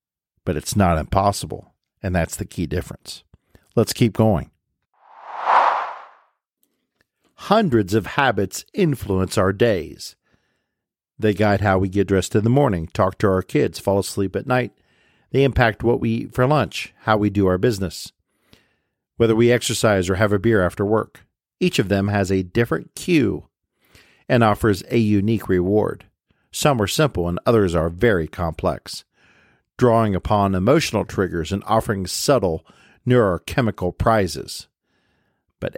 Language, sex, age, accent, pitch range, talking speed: English, male, 50-69, American, 95-115 Hz, 145 wpm